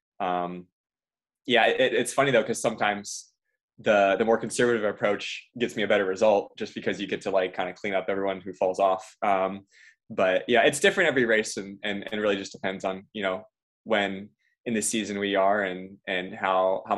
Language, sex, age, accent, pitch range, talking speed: English, male, 20-39, American, 95-110 Hz, 205 wpm